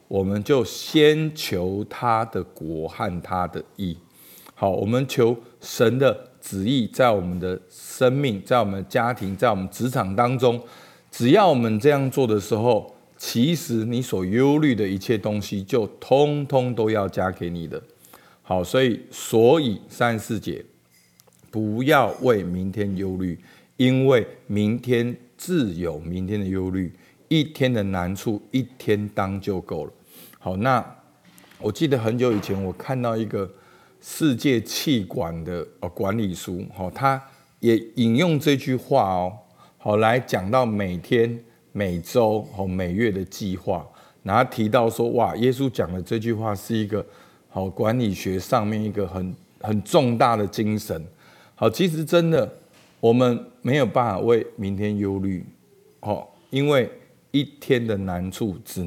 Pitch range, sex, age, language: 95-125 Hz, male, 50-69, Chinese